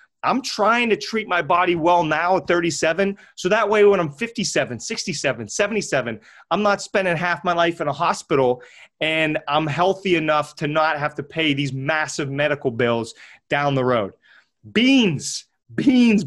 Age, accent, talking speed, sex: 30-49, American, 165 wpm, male